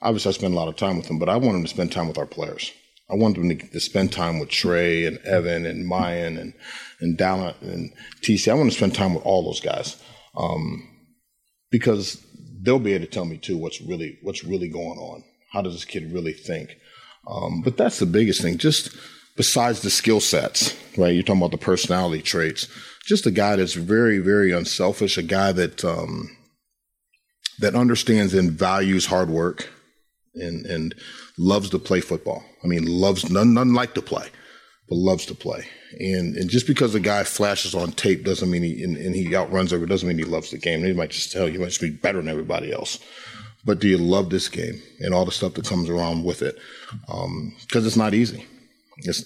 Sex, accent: male, American